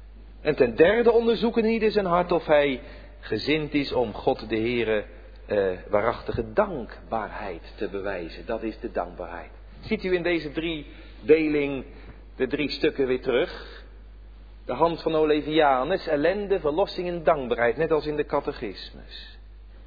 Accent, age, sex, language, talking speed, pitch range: Dutch, 50-69, male, Dutch, 150 wpm, 145-230 Hz